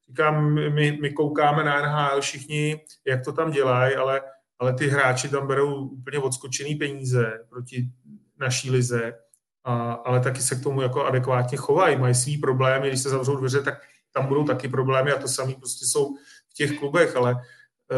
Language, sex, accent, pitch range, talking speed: Czech, male, native, 135-155 Hz, 175 wpm